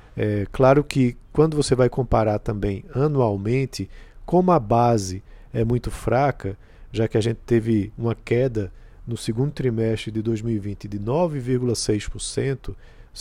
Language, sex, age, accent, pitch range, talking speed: Portuguese, male, 50-69, Brazilian, 110-135 Hz, 125 wpm